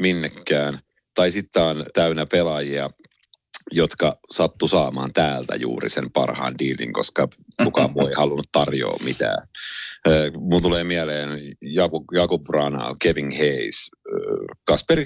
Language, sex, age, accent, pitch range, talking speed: Finnish, male, 30-49, native, 75-115 Hz, 115 wpm